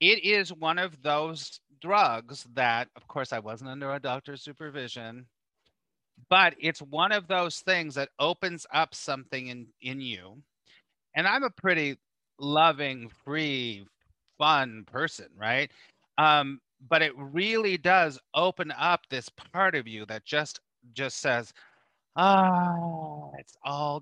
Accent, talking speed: American, 135 wpm